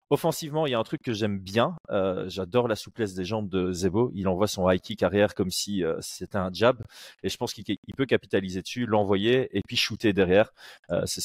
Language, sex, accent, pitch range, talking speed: French, male, French, 95-115 Hz, 235 wpm